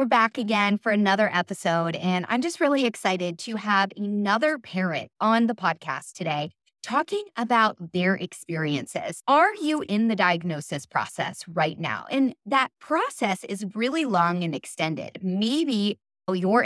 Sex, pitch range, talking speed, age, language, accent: female, 175-245 Hz, 150 wpm, 20-39, English, American